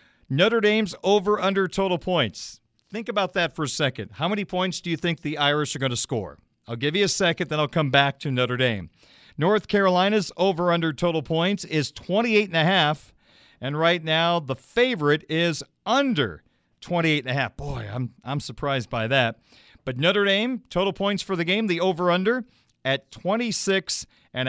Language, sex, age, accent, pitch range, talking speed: English, male, 40-59, American, 145-195 Hz, 185 wpm